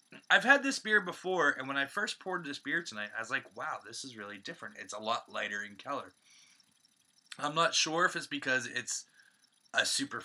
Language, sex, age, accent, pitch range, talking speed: English, male, 20-39, American, 120-170 Hz, 210 wpm